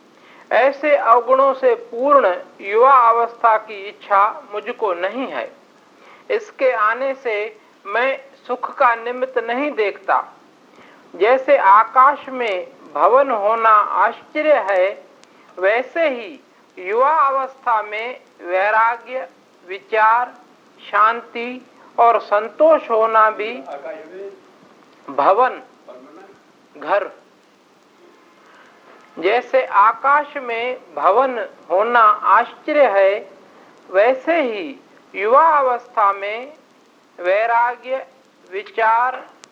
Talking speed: 85 wpm